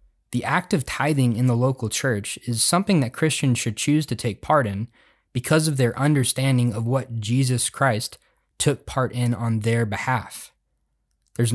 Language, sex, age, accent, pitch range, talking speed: English, male, 20-39, American, 115-130 Hz, 170 wpm